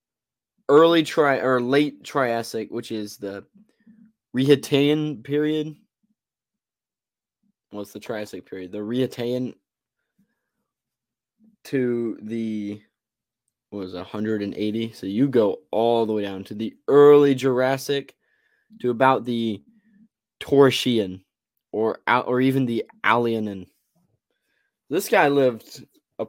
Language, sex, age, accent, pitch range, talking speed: English, male, 20-39, American, 110-155 Hz, 105 wpm